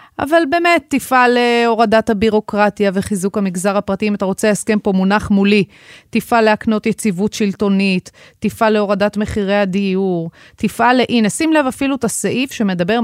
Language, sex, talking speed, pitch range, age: Hebrew, female, 145 wpm, 180-225 Hz, 30-49